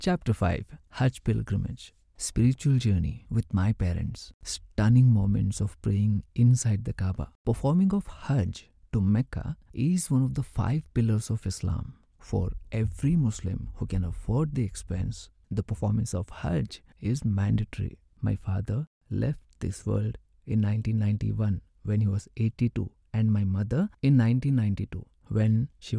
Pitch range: 100-120 Hz